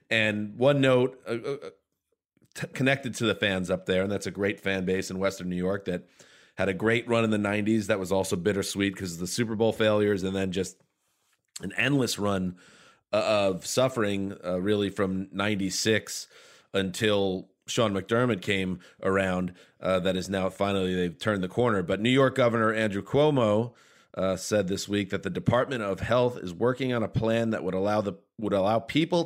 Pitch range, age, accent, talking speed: 95-115 Hz, 30-49, American, 190 wpm